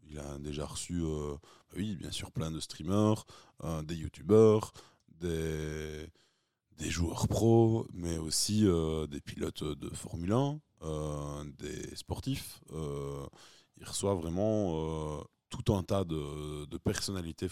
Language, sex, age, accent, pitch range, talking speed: French, male, 20-39, French, 80-100 Hz, 135 wpm